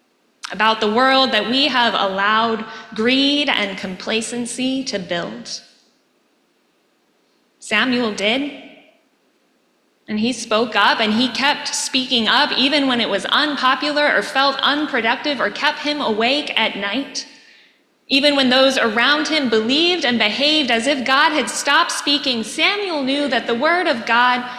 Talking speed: 140 wpm